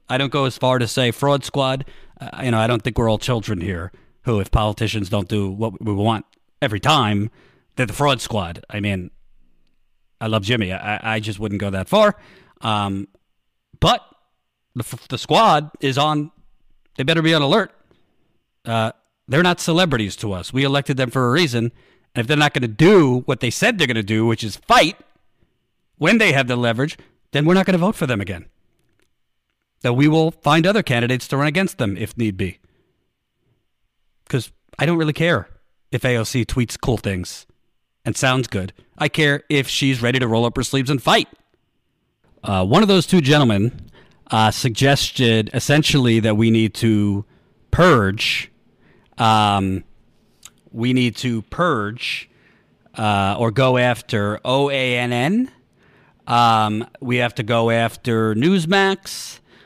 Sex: male